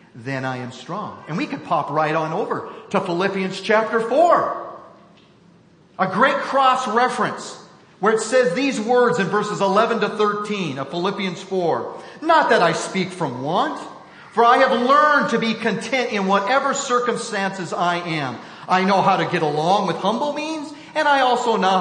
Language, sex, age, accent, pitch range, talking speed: English, male, 40-59, American, 155-230 Hz, 175 wpm